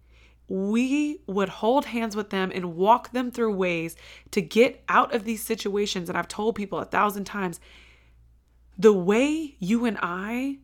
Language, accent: English, American